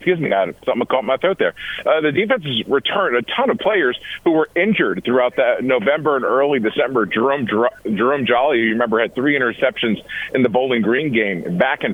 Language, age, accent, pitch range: English, 50-69, American, 120-160 Hz